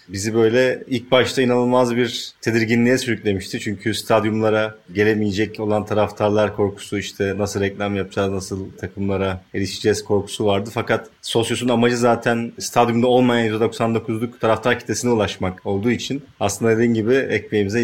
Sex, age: male, 30-49